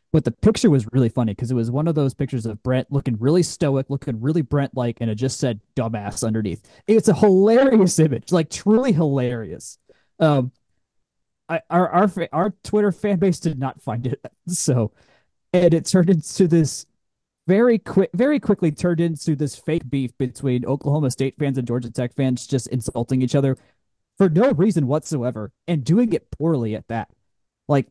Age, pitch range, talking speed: 20-39, 125-195 Hz, 180 wpm